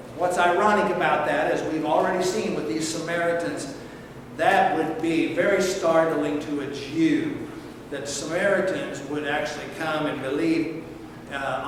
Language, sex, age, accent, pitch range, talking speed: English, male, 60-79, American, 150-200 Hz, 140 wpm